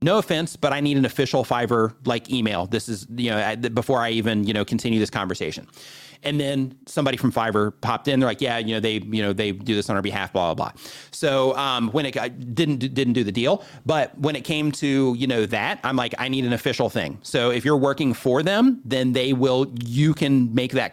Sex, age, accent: male, 30-49, American